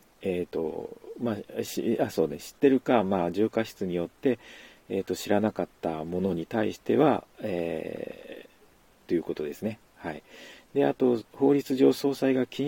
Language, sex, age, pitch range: Japanese, male, 40-59, 90-120 Hz